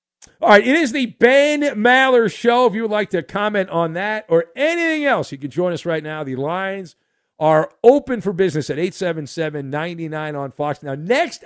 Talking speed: 195 wpm